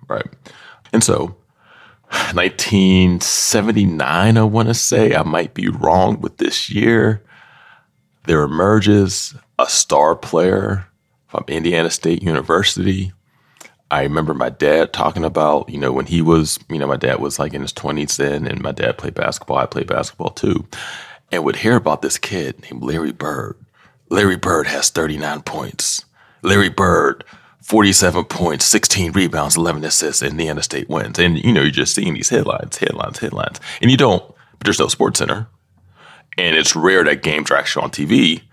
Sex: male